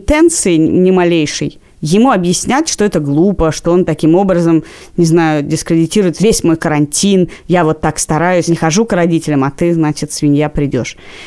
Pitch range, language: 165-220 Hz, Russian